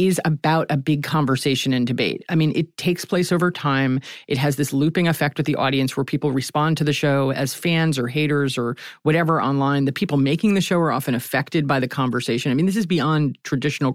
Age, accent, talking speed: 40-59, American, 225 wpm